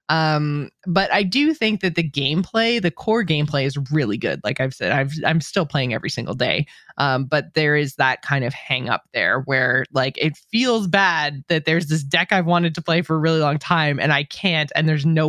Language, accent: English, American